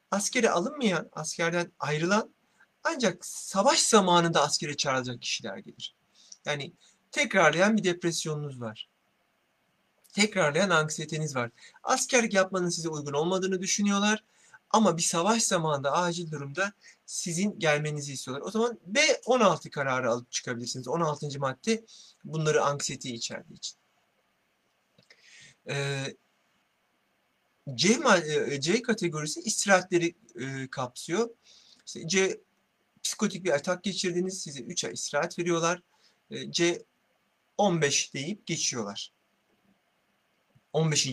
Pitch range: 145-200 Hz